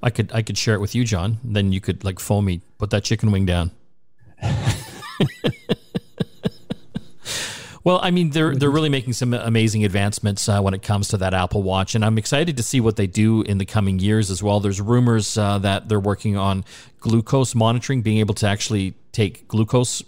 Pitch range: 100-130 Hz